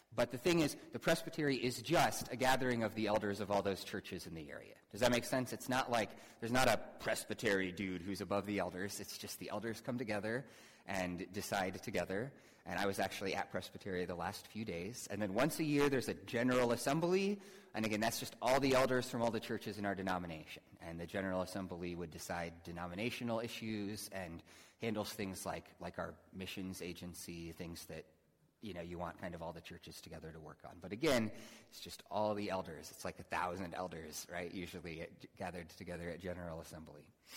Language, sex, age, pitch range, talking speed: English, male, 30-49, 90-120 Hz, 205 wpm